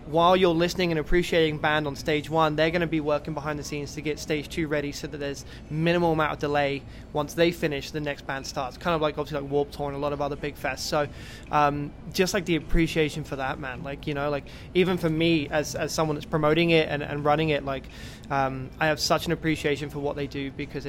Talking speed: 255 wpm